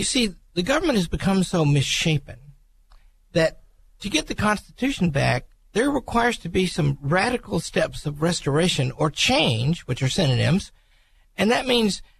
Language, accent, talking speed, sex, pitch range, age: English, American, 155 wpm, male, 125-185 Hz, 50-69